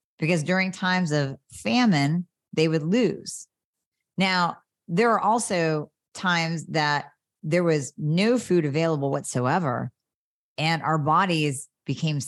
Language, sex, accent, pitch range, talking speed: English, female, American, 140-180 Hz, 115 wpm